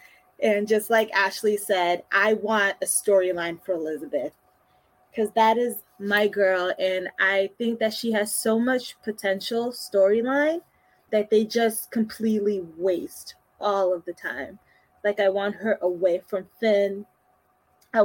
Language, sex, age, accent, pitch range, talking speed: English, female, 20-39, American, 185-225 Hz, 145 wpm